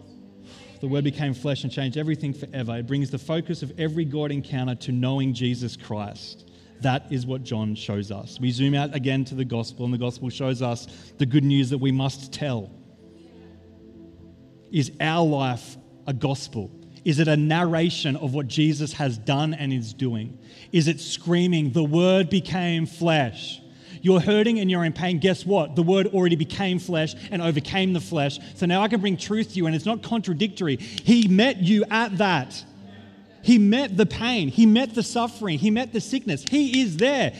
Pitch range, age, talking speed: 130-195 Hz, 30-49, 190 wpm